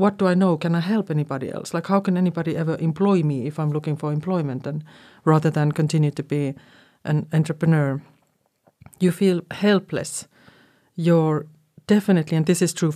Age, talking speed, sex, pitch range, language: 40-59, 175 wpm, female, 150-190 Hz, Finnish